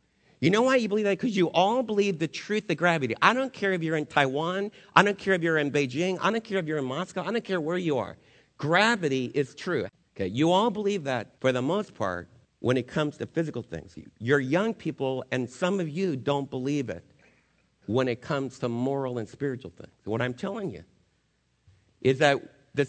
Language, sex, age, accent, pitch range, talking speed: English, male, 50-69, American, 125-175 Hz, 220 wpm